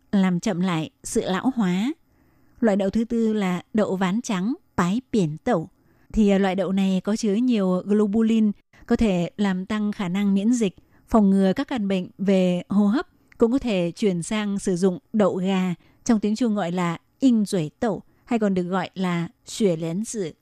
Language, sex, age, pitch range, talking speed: Vietnamese, female, 20-39, 185-225 Hz, 195 wpm